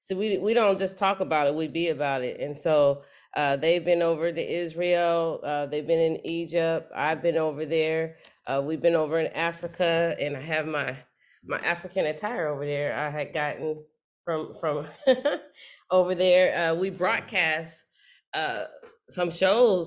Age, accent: 20-39, American